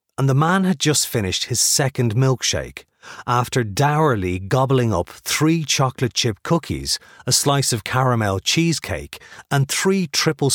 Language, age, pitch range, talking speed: English, 40-59, 110-150 Hz, 140 wpm